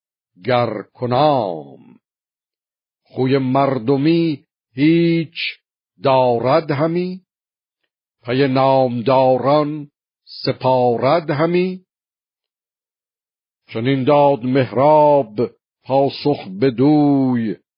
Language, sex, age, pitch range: Persian, male, 60-79, 125-140 Hz